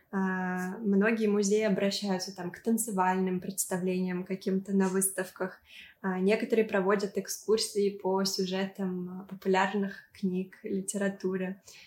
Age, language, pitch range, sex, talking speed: 20-39, Russian, 190-210 Hz, female, 85 wpm